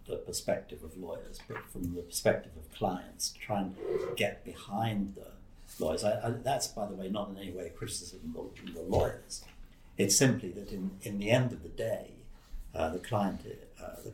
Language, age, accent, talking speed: English, 60-79, British, 195 wpm